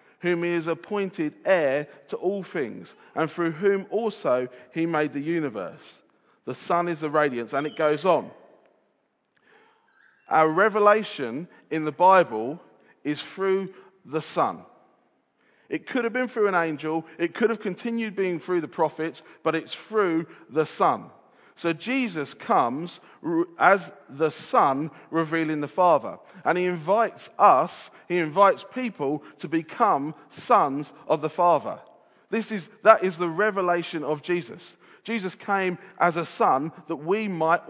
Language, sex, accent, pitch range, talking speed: English, male, British, 160-200 Hz, 145 wpm